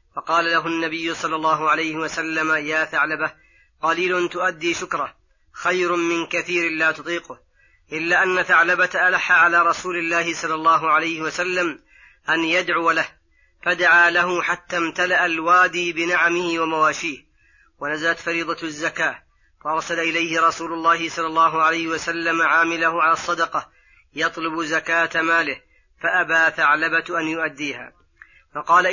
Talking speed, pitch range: 125 wpm, 160-175 Hz